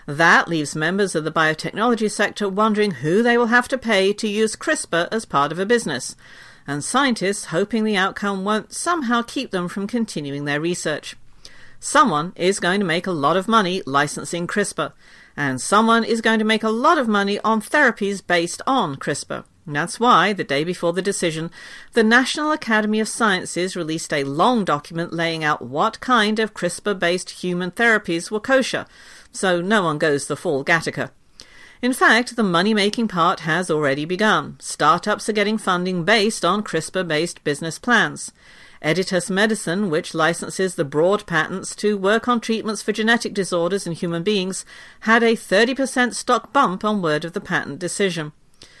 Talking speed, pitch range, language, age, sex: 170 wpm, 170-220 Hz, English, 50-69, female